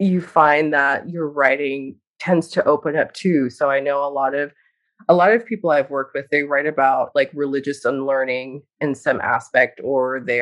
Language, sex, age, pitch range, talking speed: English, female, 30-49, 145-180 Hz, 195 wpm